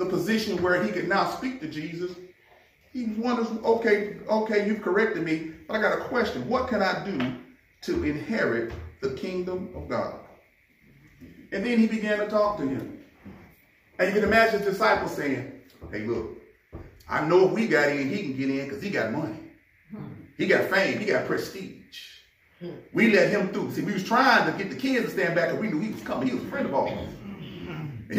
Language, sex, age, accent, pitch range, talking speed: English, male, 40-59, American, 145-230 Hz, 205 wpm